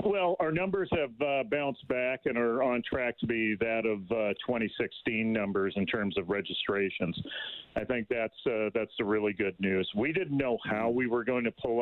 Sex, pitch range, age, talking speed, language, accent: male, 110-135 Hz, 40-59, 205 wpm, English, American